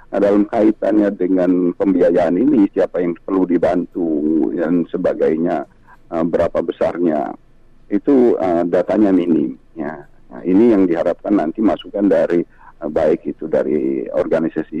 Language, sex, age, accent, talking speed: Indonesian, male, 50-69, native, 130 wpm